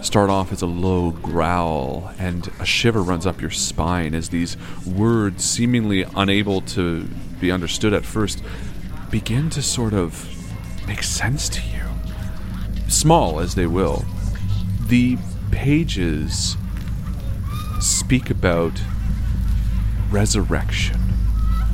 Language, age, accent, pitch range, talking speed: English, 40-59, American, 90-105 Hz, 110 wpm